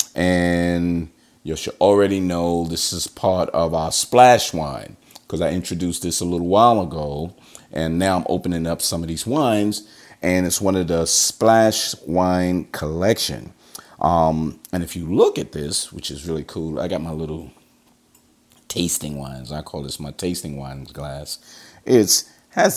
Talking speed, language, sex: 165 wpm, English, male